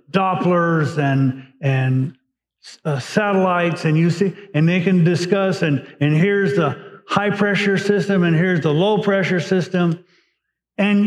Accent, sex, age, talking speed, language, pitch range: American, male, 50-69, 140 wpm, English, 155-205 Hz